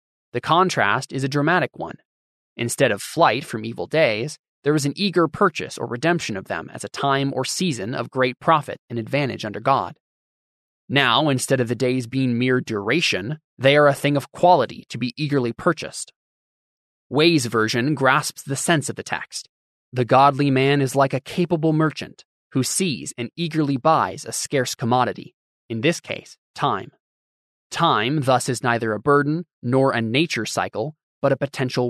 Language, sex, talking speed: English, male, 175 wpm